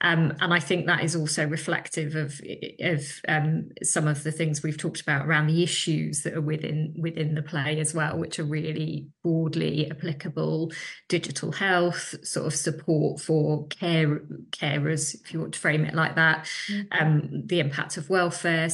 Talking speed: 175 wpm